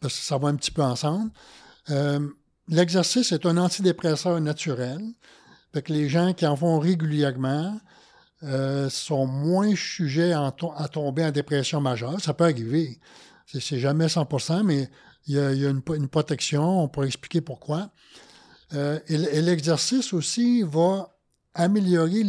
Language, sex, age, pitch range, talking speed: French, male, 60-79, 145-180 Hz, 165 wpm